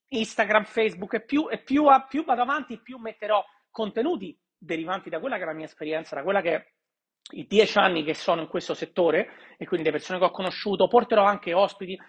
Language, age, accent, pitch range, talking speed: Italian, 40-59, native, 170-225 Hz, 205 wpm